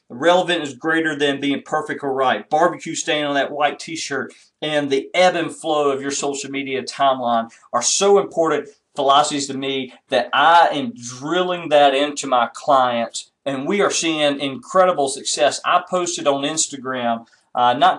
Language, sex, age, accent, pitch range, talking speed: English, male, 40-59, American, 130-160 Hz, 165 wpm